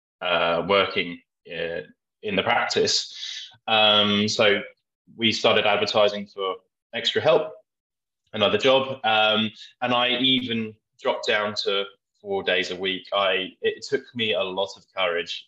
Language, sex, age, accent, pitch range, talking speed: English, male, 20-39, British, 100-145 Hz, 135 wpm